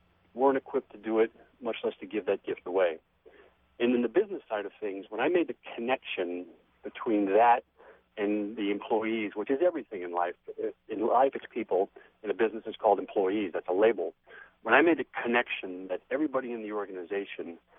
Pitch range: 105-140 Hz